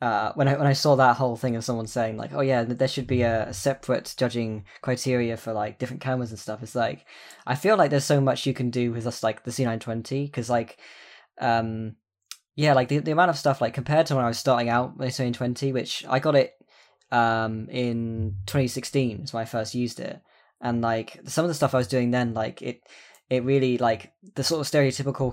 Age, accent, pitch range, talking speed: 10-29, British, 115-135 Hz, 235 wpm